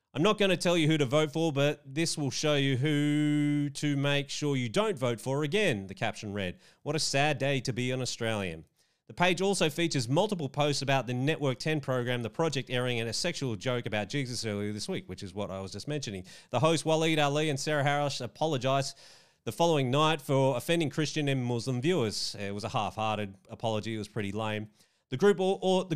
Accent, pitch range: Australian, 125-165 Hz